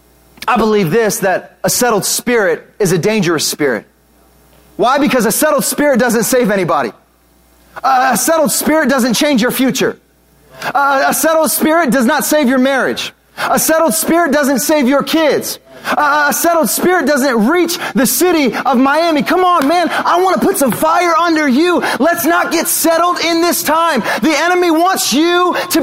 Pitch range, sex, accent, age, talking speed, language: 250-320 Hz, male, American, 30-49, 170 wpm, English